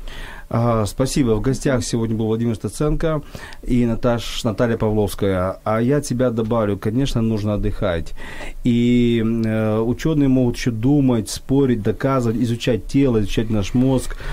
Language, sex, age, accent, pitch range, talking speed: Ukrainian, male, 40-59, native, 105-125 Hz, 140 wpm